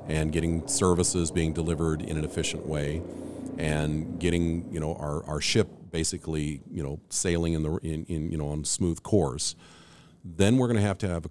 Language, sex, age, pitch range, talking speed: English, male, 50-69, 80-100 Hz, 195 wpm